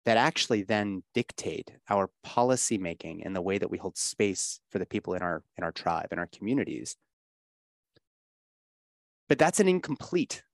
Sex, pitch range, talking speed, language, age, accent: male, 100-145 Hz, 160 wpm, English, 30-49, American